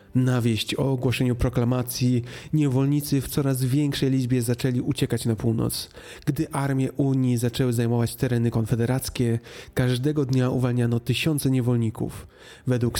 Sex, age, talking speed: male, 40-59, 125 wpm